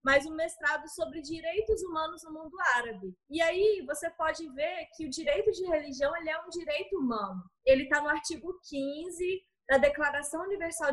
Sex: female